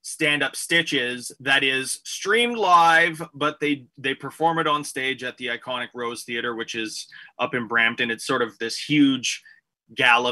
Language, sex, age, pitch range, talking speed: English, male, 20-39, 125-160 Hz, 170 wpm